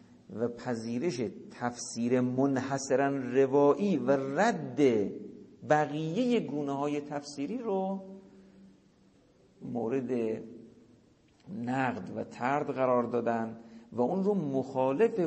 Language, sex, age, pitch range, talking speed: Persian, male, 50-69, 115-155 Hz, 85 wpm